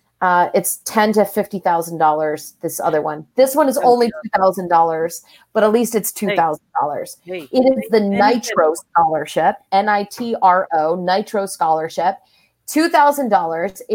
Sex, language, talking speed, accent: female, English, 115 wpm, American